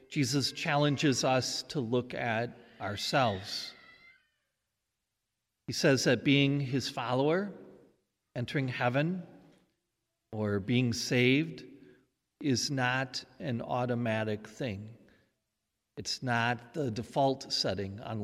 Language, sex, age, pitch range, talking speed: English, male, 50-69, 115-145 Hz, 95 wpm